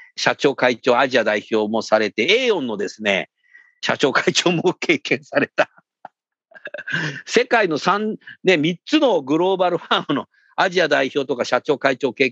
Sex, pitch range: male, 120-200 Hz